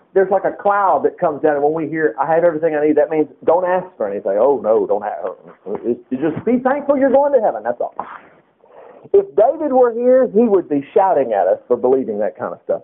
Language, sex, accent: English, male, American